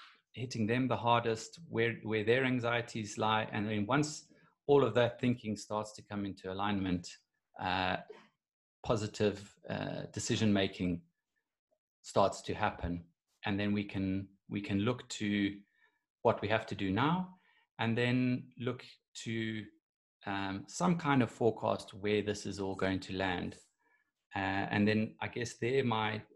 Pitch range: 100-120 Hz